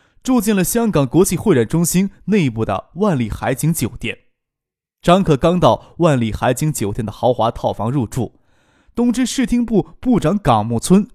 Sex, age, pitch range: male, 20-39, 120-175 Hz